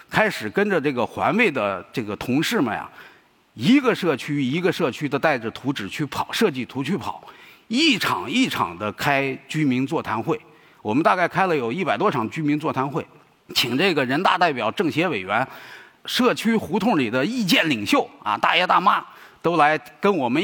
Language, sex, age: Chinese, male, 50-69